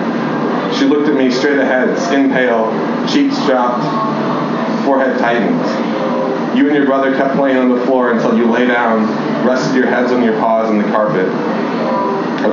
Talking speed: 170 wpm